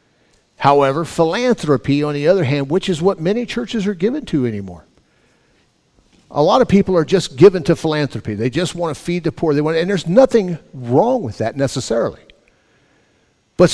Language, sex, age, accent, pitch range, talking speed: English, male, 50-69, American, 135-190 Hz, 170 wpm